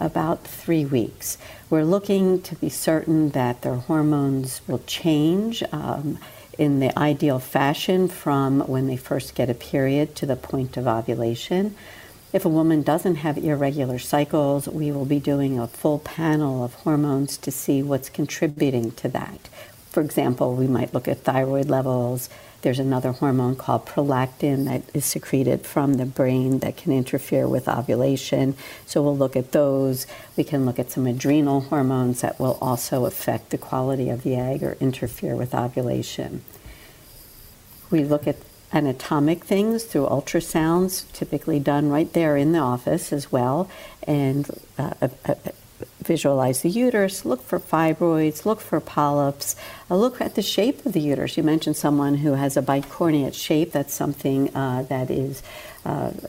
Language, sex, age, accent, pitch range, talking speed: English, female, 60-79, American, 130-160 Hz, 160 wpm